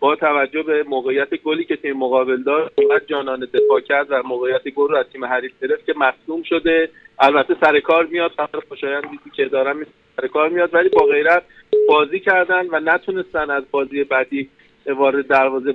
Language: Persian